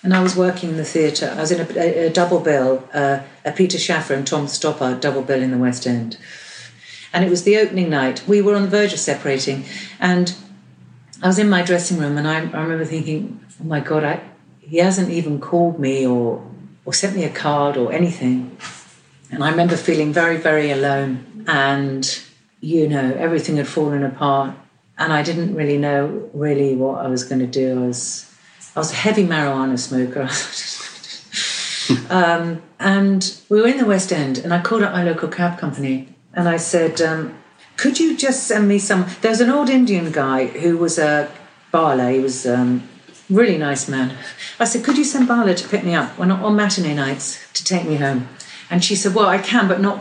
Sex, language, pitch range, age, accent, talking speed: female, English, 140-190 Hz, 50-69, British, 205 wpm